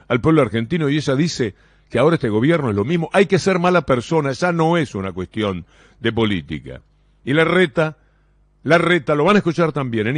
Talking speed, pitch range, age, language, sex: 210 wpm, 115-165 Hz, 60-79, Spanish, male